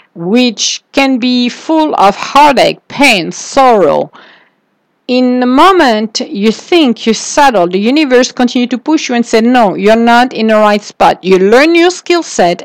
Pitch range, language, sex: 195-255 Hz, English, female